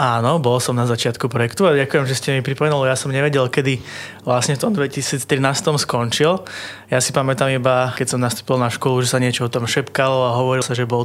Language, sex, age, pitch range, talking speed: Slovak, male, 20-39, 120-135 Hz, 225 wpm